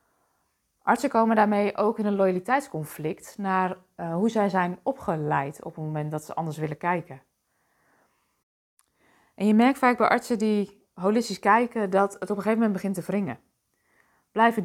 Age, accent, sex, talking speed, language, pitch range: 20-39, Dutch, female, 165 wpm, Dutch, 175-220 Hz